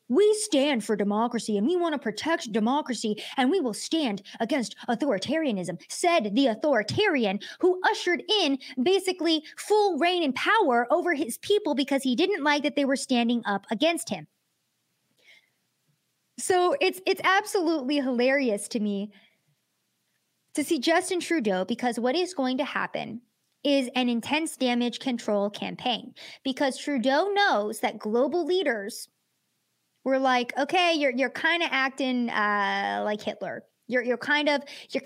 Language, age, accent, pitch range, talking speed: English, 20-39, American, 215-285 Hz, 145 wpm